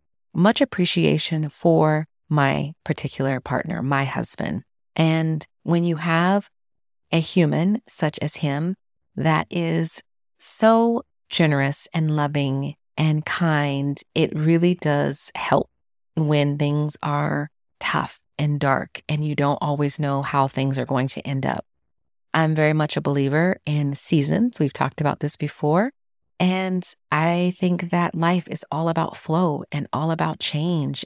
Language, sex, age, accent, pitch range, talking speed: English, female, 30-49, American, 145-180 Hz, 140 wpm